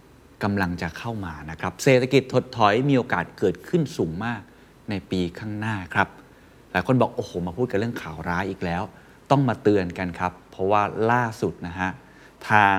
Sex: male